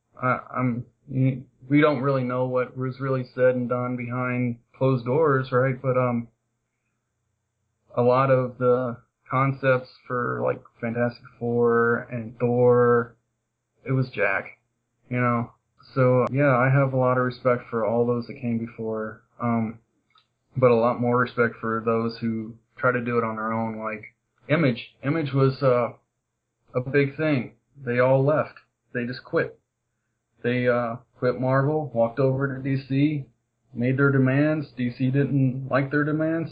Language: English